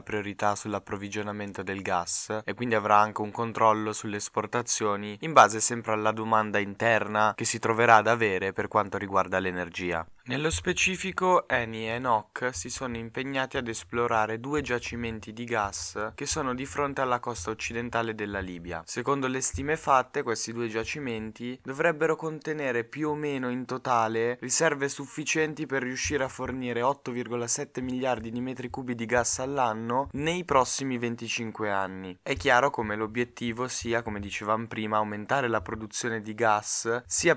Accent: native